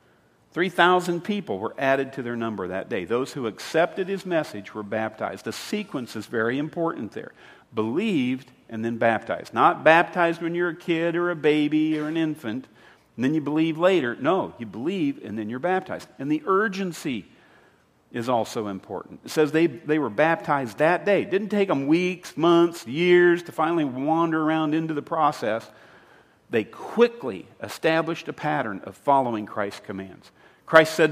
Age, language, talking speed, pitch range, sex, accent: 50-69, English, 170 wpm, 135-185 Hz, male, American